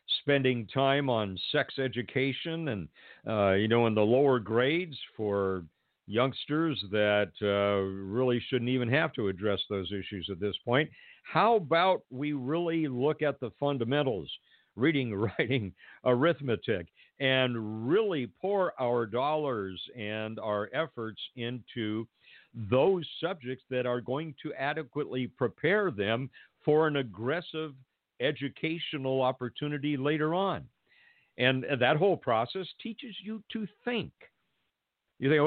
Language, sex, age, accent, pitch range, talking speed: English, male, 50-69, American, 110-145 Hz, 125 wpm